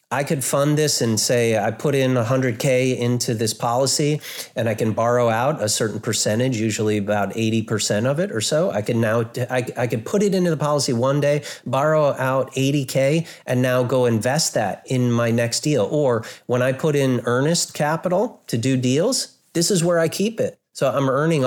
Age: 30-49